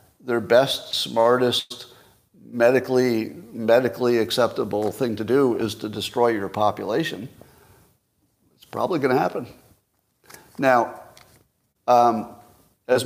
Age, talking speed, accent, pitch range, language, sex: 50-69, 100 wpm, American, 105-125 Hz, English, male